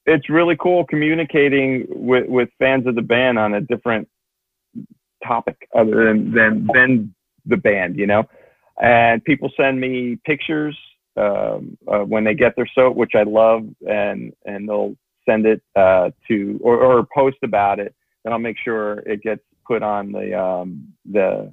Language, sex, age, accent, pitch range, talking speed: English, male, 40-59, American, 105-130 Hz, 165 wpm